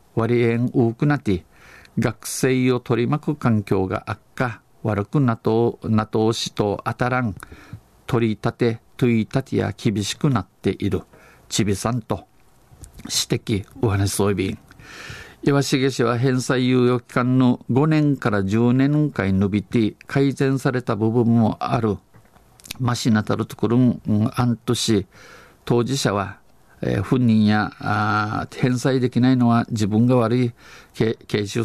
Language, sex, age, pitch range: Japanese, male, 50-69, 110-130 Hz